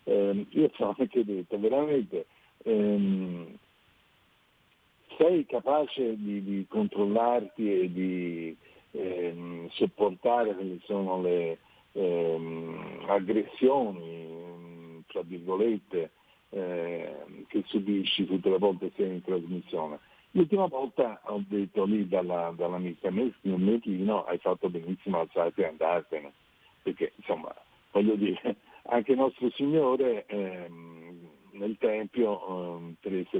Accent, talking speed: native, 110 wpm